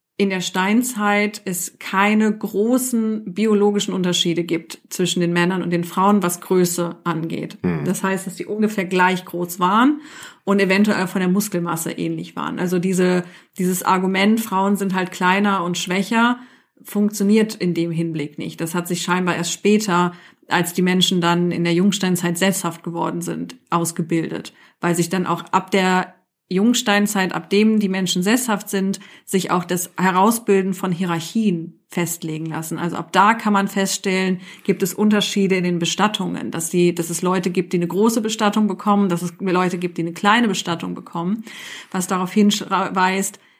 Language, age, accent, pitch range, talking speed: German, 30-49, German, 175-205 Hz, 165 wpm